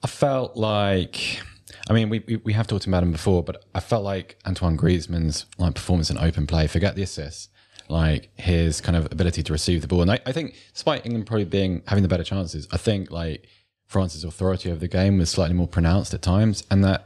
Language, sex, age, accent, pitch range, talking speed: English, male, 20-39, British, 80-100 Hz, 220 wpm